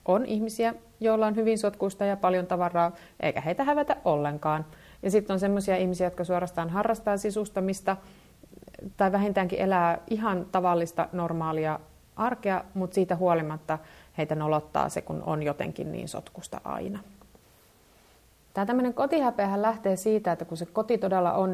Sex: female